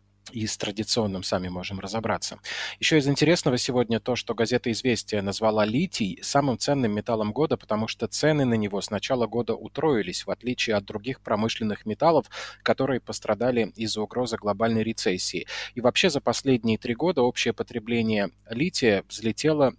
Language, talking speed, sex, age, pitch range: Russian, 155 wpm, male, 20-39, 110-130 Hz